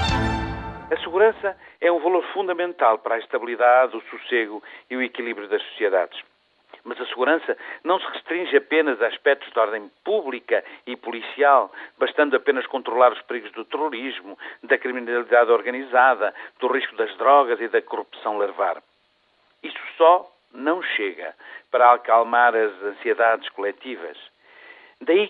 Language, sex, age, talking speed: Portuguese, male, 50-69, 140 wpm